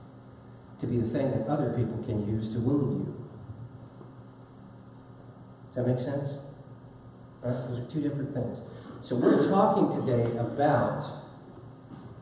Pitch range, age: 120-145 Hz, 50-69